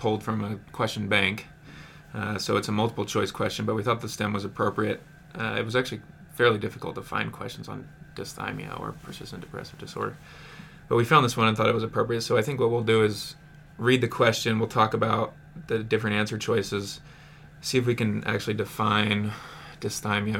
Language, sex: English, male